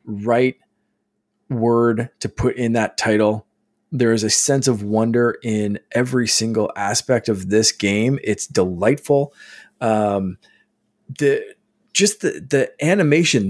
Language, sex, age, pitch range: English, male, 20-39, 105-130 Hz